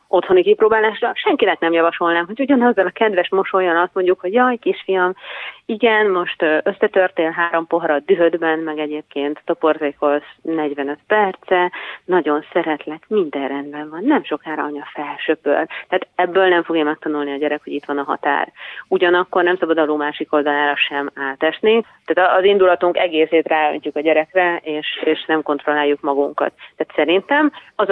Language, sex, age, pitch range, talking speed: Hungarian, female, 30-49, 155-190 Hz, 150 wpm